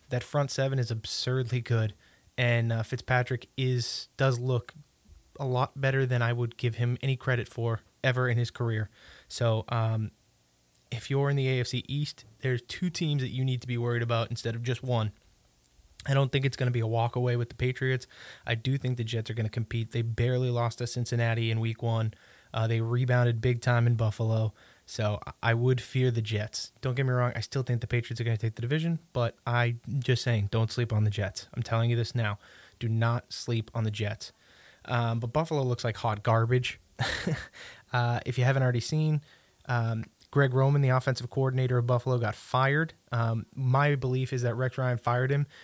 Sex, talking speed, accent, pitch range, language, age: male, 210 wpm, American, 115-130 Hz, English, 20-39